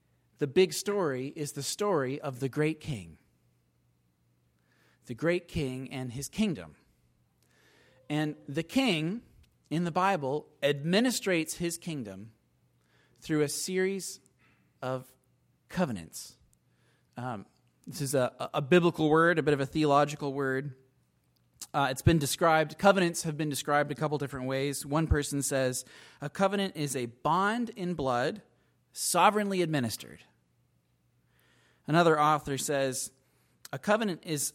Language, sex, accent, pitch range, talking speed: English, male, American, 120-170 Hz, 125 wpm